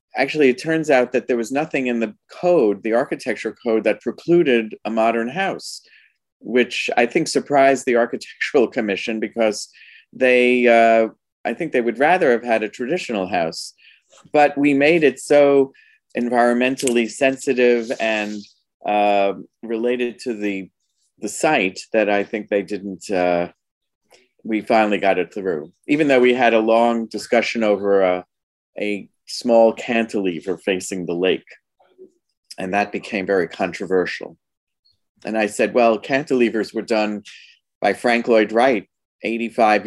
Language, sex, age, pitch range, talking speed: English, male, 40-59, 105-125 Hz, 145 wpm